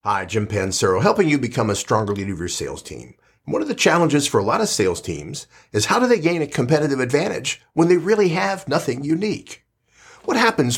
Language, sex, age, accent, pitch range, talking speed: English, male, 50-69, American, 115-160 Hz, 215 wpm